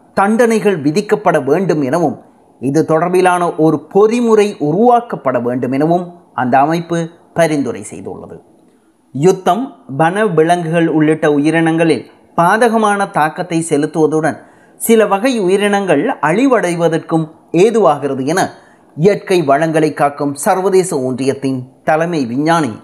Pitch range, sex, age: 155-205 Hz, male, 30-49